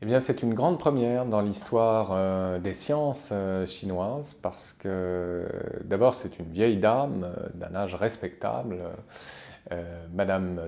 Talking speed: 125 wpm